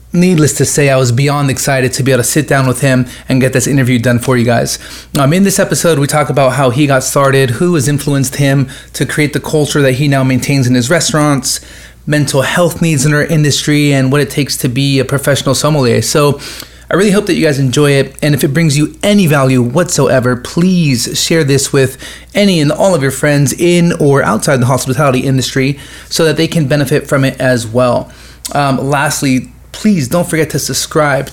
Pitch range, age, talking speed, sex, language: 130-155 Hz, 30-49, 215 wpm, male, English